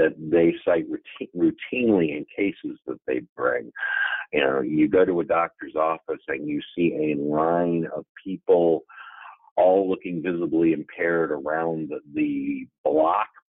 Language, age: English, 50-69